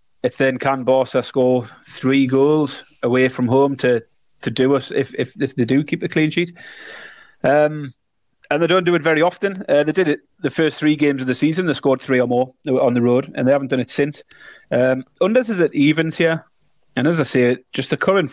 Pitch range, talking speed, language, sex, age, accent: 120-150 Hz, 225 wpm, English, male, 30-49, British